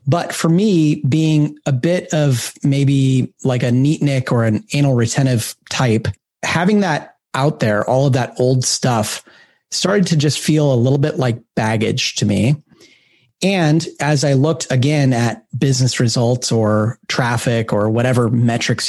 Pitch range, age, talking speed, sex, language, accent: 120-155 Hz, 30-49, 160 wpm, male, English, American